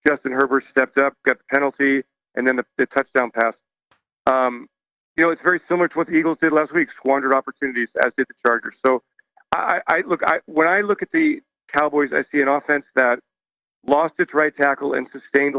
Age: 40-59